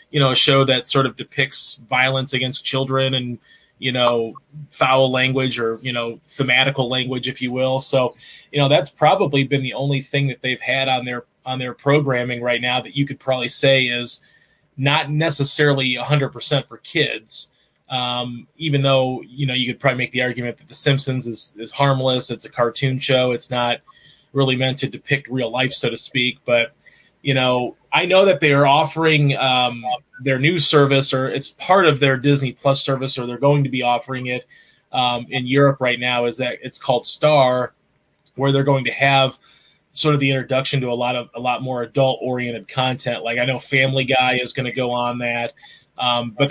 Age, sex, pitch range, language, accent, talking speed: 20-39, male, 125-140 Hz, English, American, 200 wpm